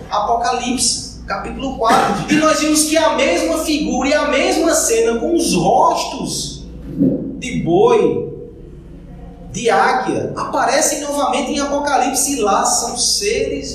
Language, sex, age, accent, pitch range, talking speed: Portuguese, male, 20-39, Brazilian, 140-220 Hz, 125 wpm